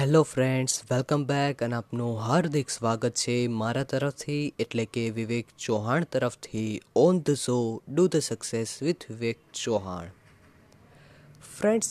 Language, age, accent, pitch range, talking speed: English, 20-39, Indian, 115-155 Hz, 135 wpm